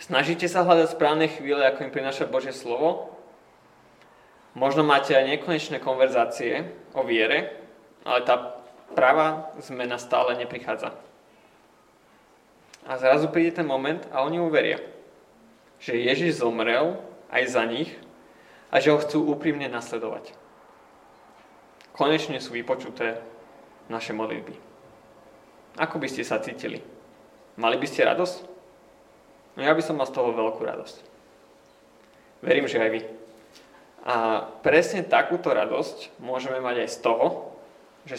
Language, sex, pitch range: Slovak, male, 120-155 Hz